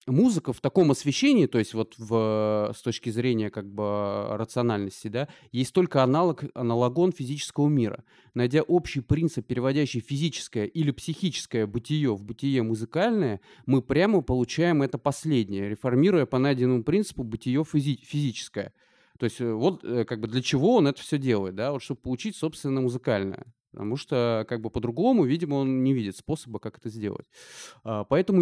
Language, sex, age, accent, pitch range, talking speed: Russian, male, 30-49, native, 120-160 Hz, 155 wpm